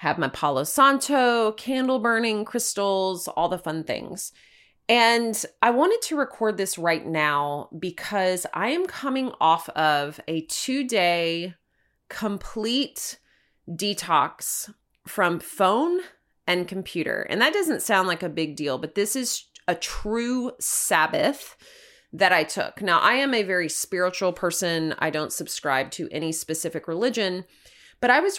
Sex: female